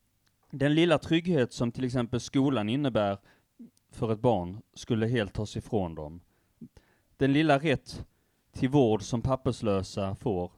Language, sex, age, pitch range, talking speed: Swedish, male, 30-49, 100-125 Hz, 135 wpm